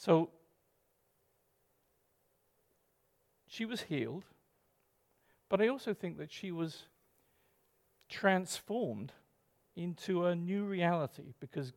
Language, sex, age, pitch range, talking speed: English, male, 50-69, 155-190 Hz, 85 wpm